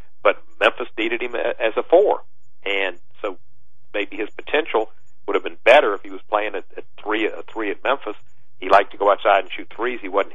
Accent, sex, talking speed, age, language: American, male, 215 wpm, 50-69, English